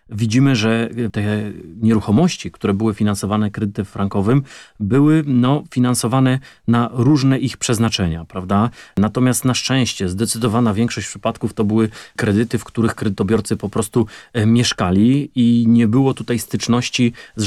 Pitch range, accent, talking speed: 105-120 Hz, native, 130 wpm